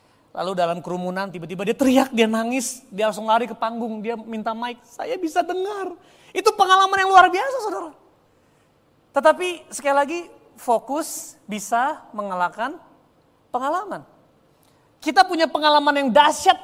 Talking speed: 135 wpm